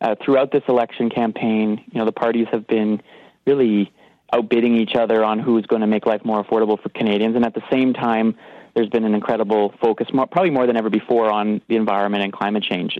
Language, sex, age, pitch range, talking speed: English, male, 30-49, 110-125 Hz, 220 wpm